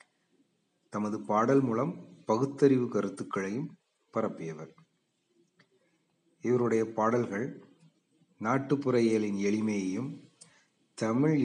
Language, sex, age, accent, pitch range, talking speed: Tamil, male, 40-59, native, 105-155 Hz, 60 wpm